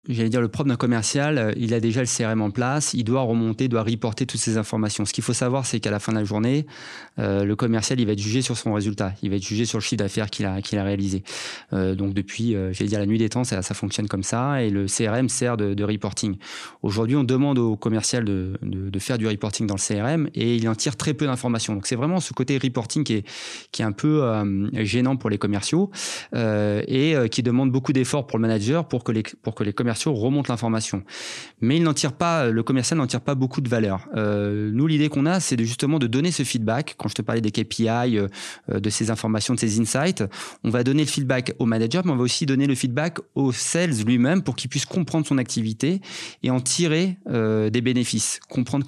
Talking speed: 245 wpm